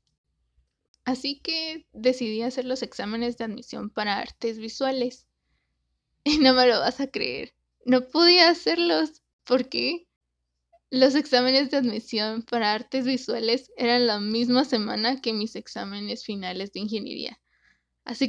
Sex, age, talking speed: female, 10-29, 130 wpm